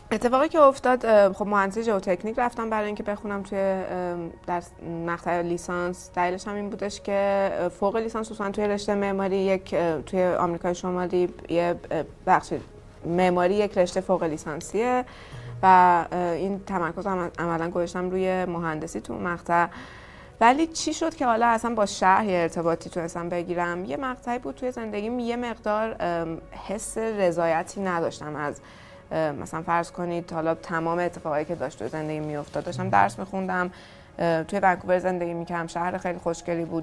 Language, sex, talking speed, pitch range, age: Persian, female, 145 wpm, 170-200 Hz, 20-39